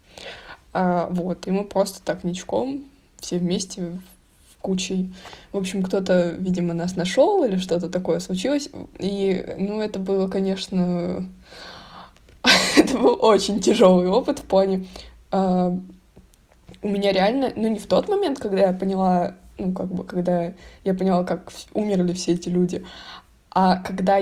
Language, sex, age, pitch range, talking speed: Russian, female, 20-39, 180-215 Hz, 140 wpm